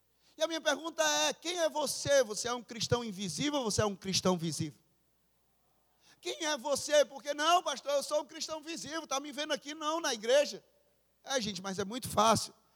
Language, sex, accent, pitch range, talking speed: Portuguese, male, Brazilian, 195-260 Hz, 200 wpm